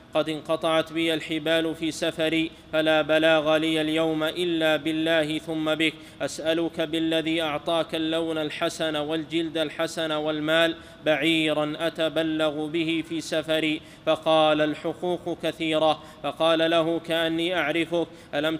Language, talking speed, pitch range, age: Arabic, 115 wpm, 155-165 Hz, 20-39